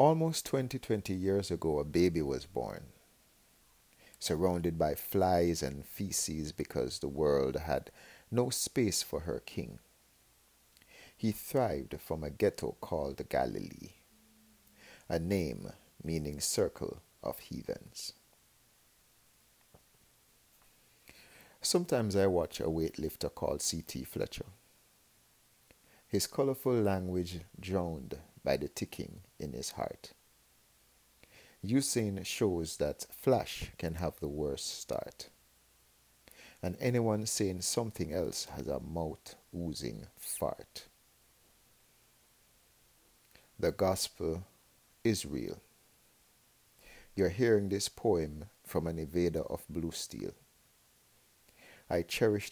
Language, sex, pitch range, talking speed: English, male, 80-105 Hz, 100 wpm